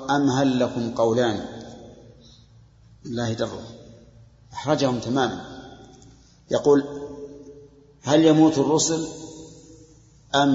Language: Arabic